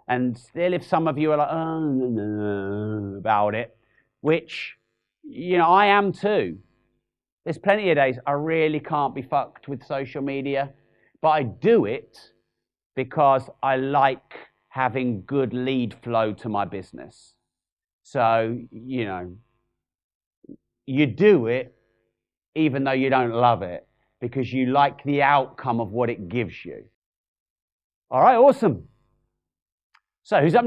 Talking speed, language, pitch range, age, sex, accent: 140 wpm, English, 110-150 Hz, 40-59, male, British